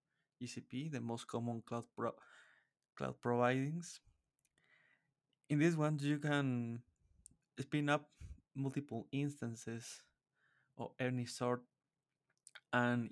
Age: 20-39